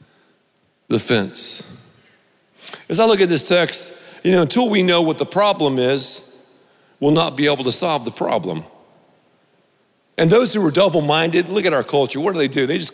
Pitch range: 130-200 Hz